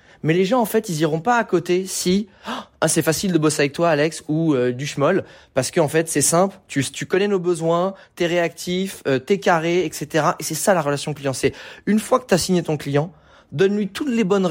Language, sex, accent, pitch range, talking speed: French, male, French, 145-190 Hz, 240 wpm